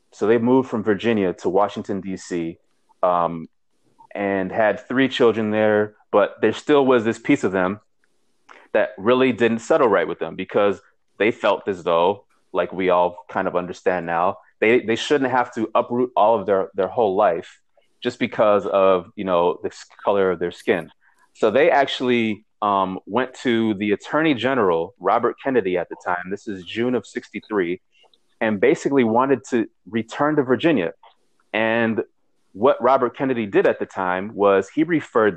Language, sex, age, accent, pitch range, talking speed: English, male, 30-49, American, 95-120 Hz, 170 wpm